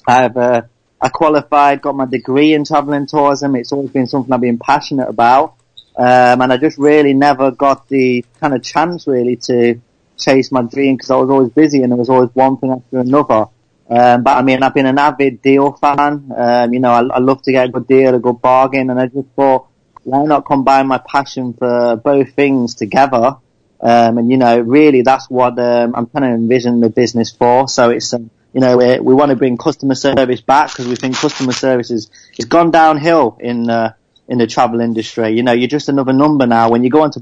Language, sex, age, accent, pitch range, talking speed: English, male, 30-49, British, 120-135 Hz, 220 wpm